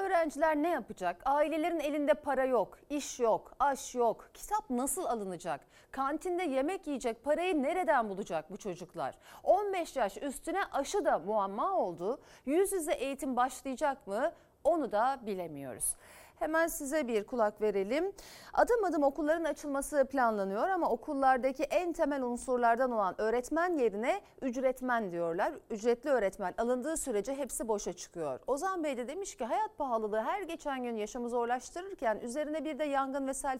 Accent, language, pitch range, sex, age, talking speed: native, Turkish, 235-315 Hz, female, 40-59, 145 wpm